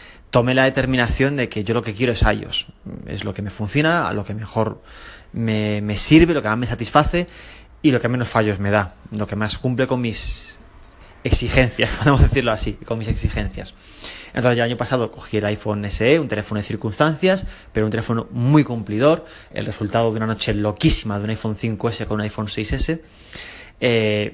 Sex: male